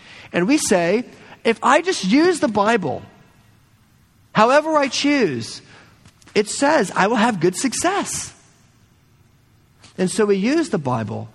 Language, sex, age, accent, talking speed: English, male, 40-59, American, 130 wpm